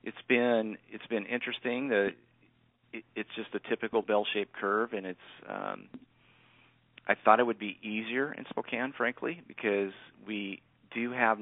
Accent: American